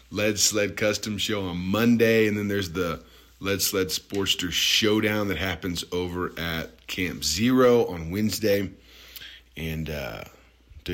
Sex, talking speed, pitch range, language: male, 130 wpm, 80-100 Hz, English